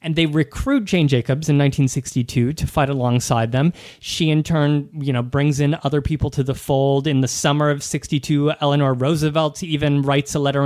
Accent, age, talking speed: American, 30-49, 190 wpm